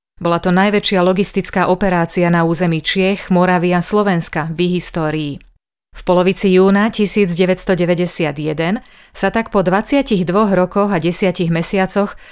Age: 30-49